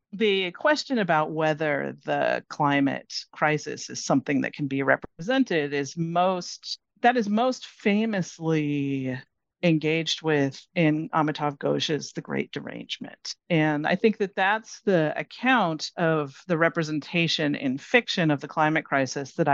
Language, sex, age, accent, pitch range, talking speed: English, female, 40-59, American, 135-165 Hz, 135 wpm